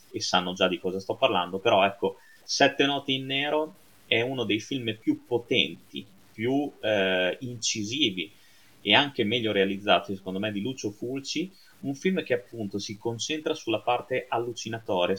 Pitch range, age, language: 95-130 Hz, 30-49, Italian